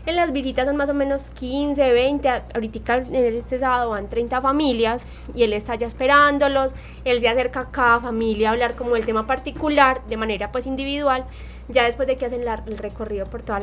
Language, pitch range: Spanish, 220-265 Hz